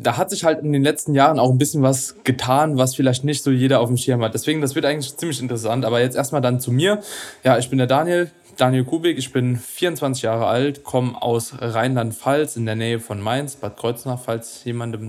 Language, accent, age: German, German, 20-39